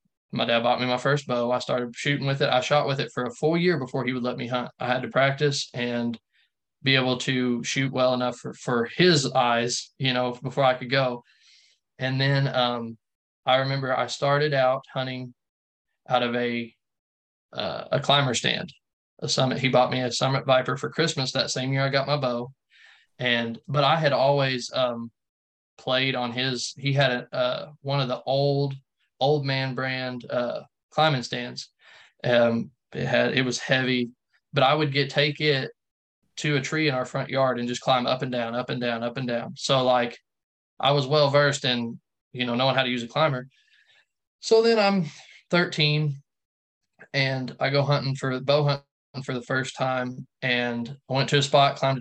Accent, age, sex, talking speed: American, 20-39, male, 195 wpm